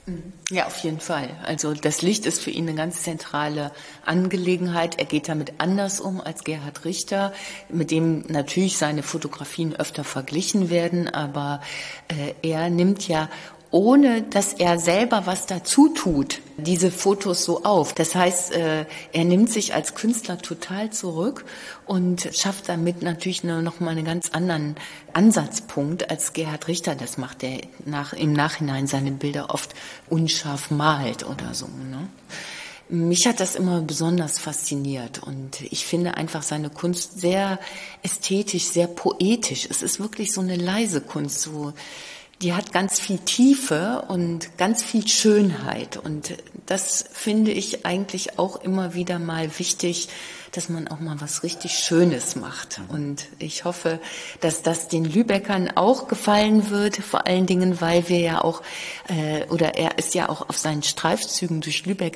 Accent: German